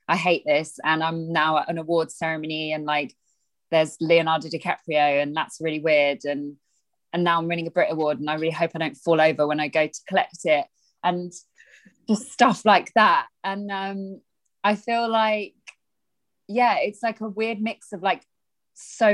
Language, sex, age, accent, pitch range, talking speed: English, female, 20-39, British, 160-205 Hz, 185 wpm